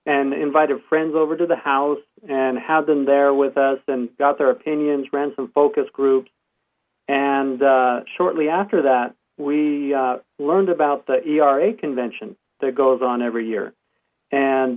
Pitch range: 135-155 Hz